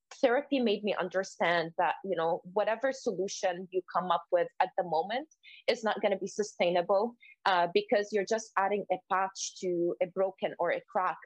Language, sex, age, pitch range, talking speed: English, female, 20-39, 180-230 Hz, 185 wpm